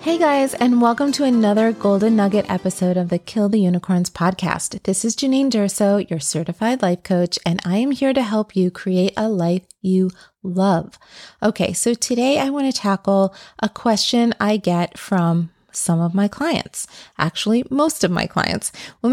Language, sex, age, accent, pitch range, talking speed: English, female, 30-49, American, 185-235 Hz, 175 wpm